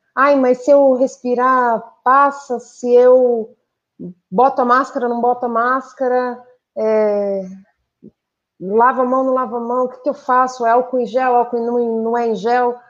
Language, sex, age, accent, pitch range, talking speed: Portuguese, female, 30-49, Brazilian, 215-260 Hz, 170 wpm